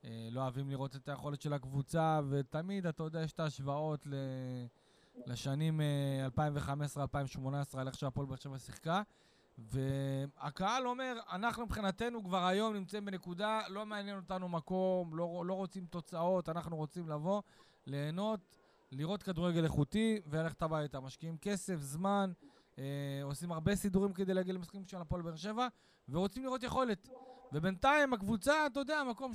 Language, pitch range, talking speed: Hebrew, 145-200 Hz, 145 wpm